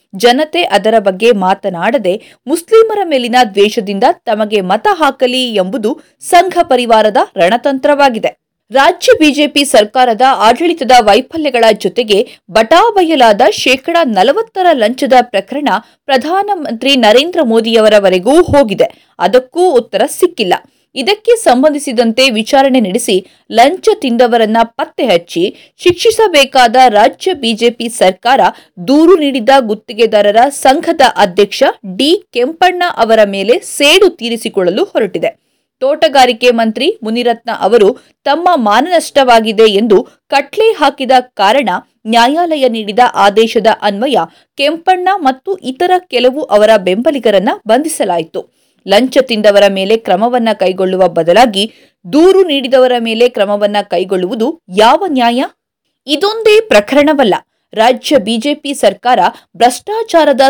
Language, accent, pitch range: Kannada, native, 220-310 Hz